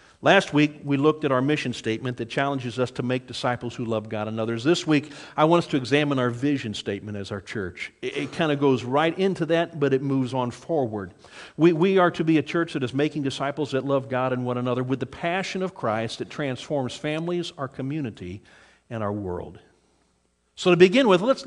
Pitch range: 125-165 Hz